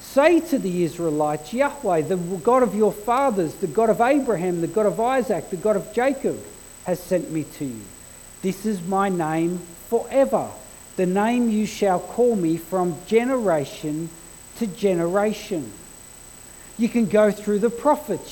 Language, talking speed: English, 155 wpm